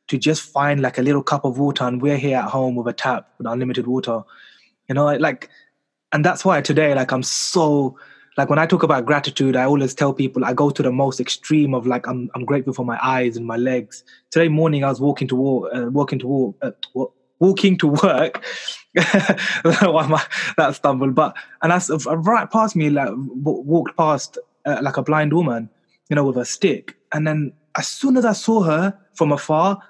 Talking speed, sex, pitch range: 200 wpm, male, 130-160 Hz